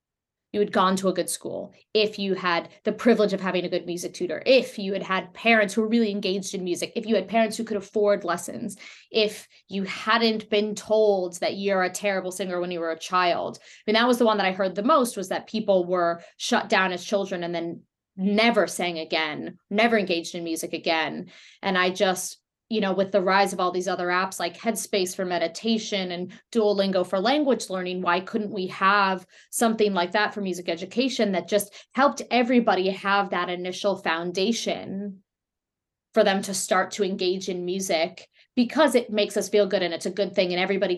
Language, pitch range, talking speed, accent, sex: English, 180-215 Hz, 210 wpm, American, female